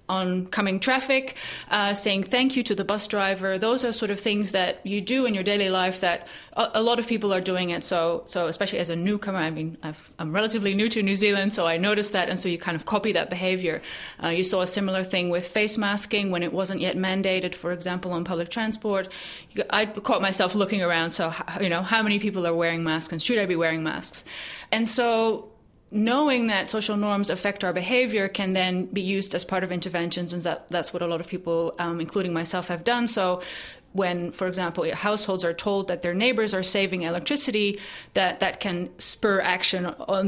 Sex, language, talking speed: female, English, 220 wpm